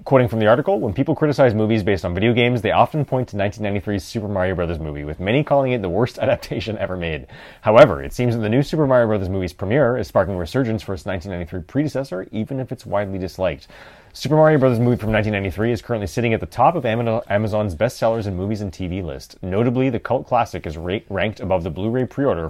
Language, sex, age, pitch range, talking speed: English, male, 30-49, 95-120 Hz, 225 wpm